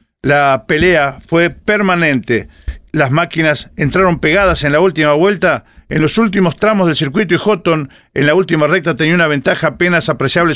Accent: Argentinian